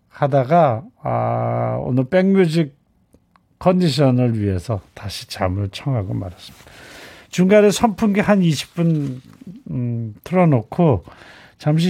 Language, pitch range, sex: Korean, 125-185 Hz, male